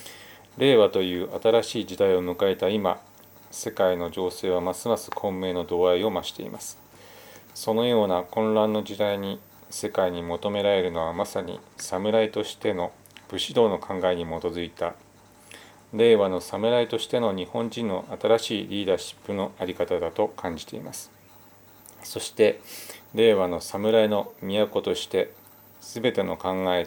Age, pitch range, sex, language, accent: 40-59, 90-110 Hz, male, Japanese, native